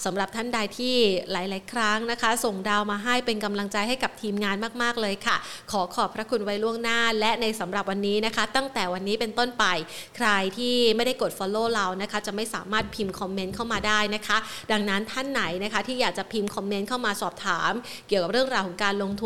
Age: 30-49